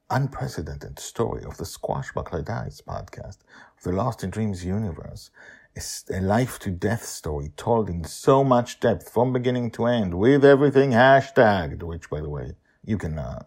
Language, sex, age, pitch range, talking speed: English, male, 50-69, 80-100 Hz, 165 wpm